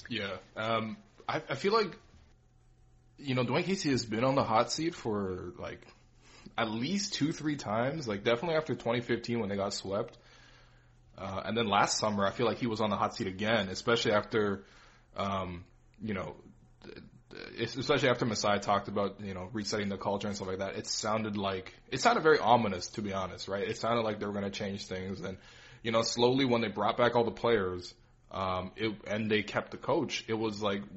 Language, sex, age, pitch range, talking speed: English, male, 20-39, 100-120 Hz, 205 wpm